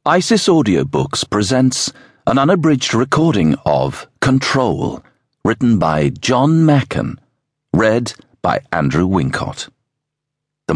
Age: 50-69